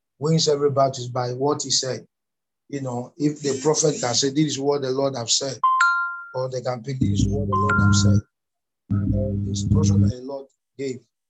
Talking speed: 195 wpm